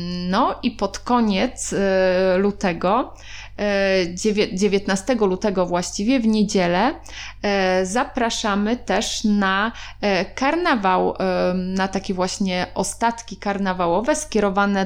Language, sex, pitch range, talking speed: Polish, female, 190-225 Hz, 80 wpm